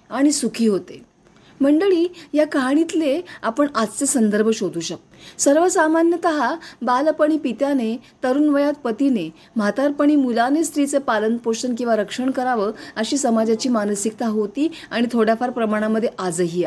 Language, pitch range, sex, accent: Marathi, 220-290 Hz, female, native